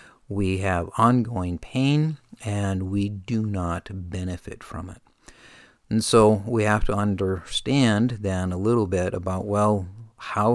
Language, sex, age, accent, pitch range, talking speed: English, male, 50-69, American, 95-115 Hz, 135 wpm